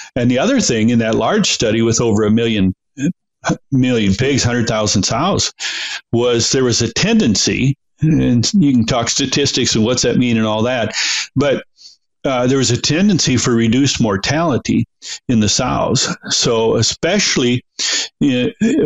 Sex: male